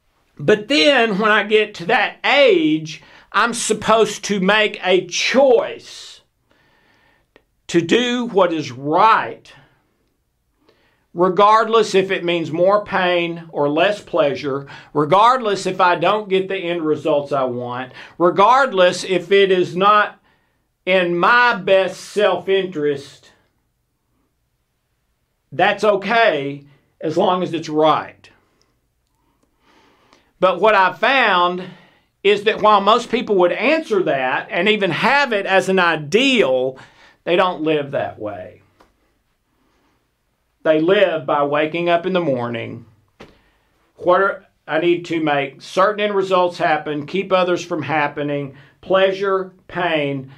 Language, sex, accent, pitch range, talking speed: English, male, American, 145-205 Hz, 120 wpm